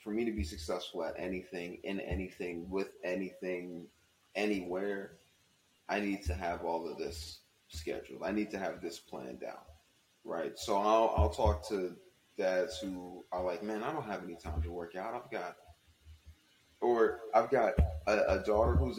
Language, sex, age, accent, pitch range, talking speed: English, male, 30-49, American, 90-110 Hz, 175 wpm